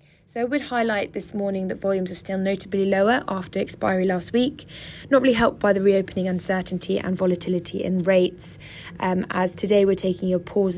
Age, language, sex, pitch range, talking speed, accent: 20-39, English, female, 175-195 Hz, 190 wpm, British